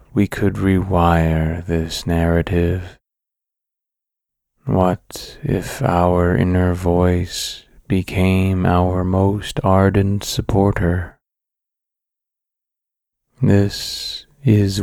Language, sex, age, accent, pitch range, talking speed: English, male, 30-49, American, 90-100 Hz, 70 wpm